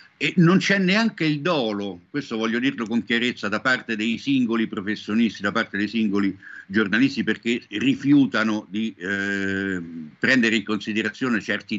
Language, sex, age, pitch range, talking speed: Italian, male, 60-79, 105-150 Hz, 150 wpm